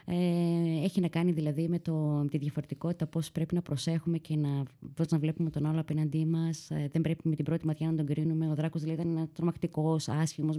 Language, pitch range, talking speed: Greek, 155-180 Hz, 220 wpm